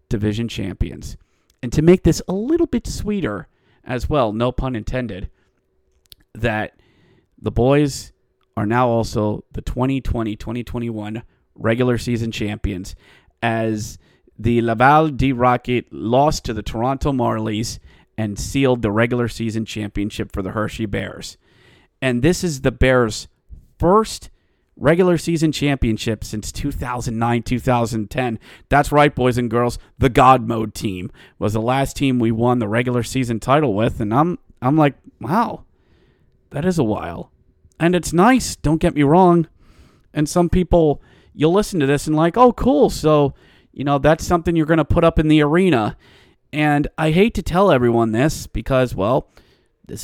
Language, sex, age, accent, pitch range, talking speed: English, male, 30-49, American, 110-150 Hz, 150 wpm